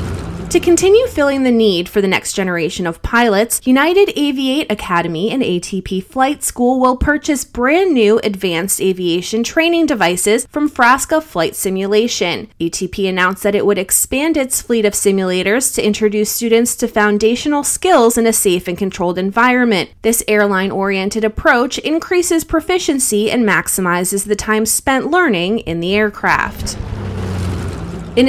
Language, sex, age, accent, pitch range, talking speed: English, female, 20-39, American, 185-260 Hz, 140 wpm